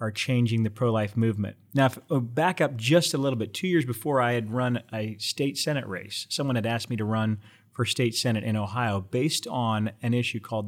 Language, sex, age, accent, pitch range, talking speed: English, male, 30-49, American, 110-130 Hz, 225 wpm